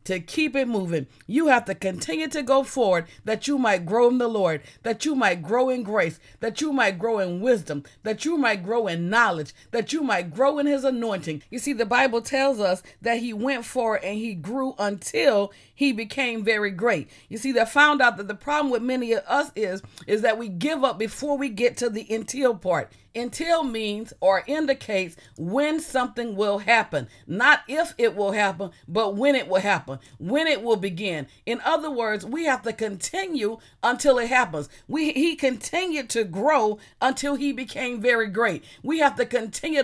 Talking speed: 200 wpm